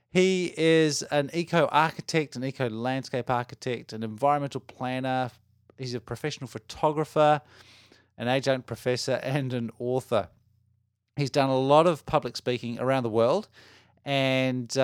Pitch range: 115-140 Hz